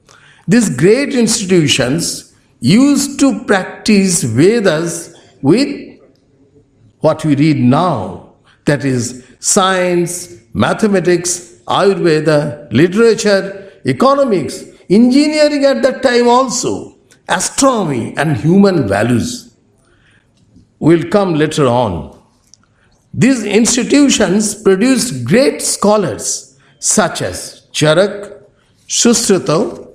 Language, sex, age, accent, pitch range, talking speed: English, male, 60-79, Indian, 140-215 Hz, 80 wpm